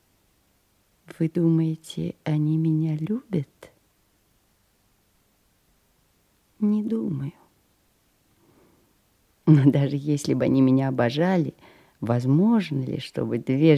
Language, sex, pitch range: Russian, female, 130-185 Hz